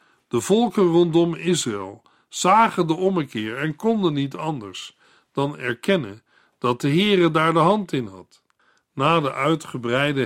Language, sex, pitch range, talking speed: Dutch, male, 130-170 Hz, 140 wpm